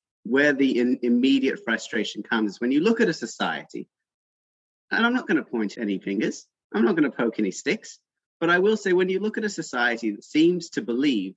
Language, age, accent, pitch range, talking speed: English, 30-49, British, 110-145 Hz, 215 wpm